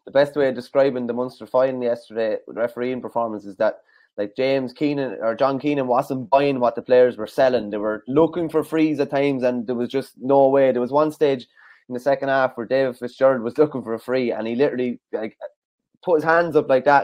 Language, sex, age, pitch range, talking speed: English, male, 20-39, 120-140 Hz, 235 wpm